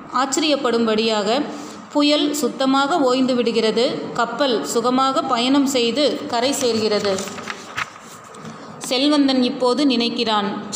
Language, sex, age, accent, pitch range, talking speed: Tamil, female, 20-39, native, 220-265 Hz, 80 wpm